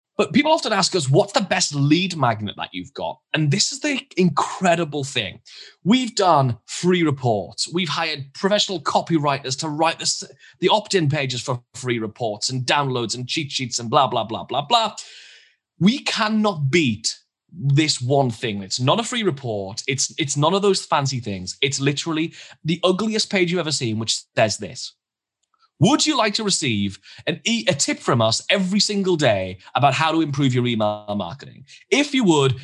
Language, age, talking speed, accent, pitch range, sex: English, 20-39, 180 wpm, British, 130-200 Hz, male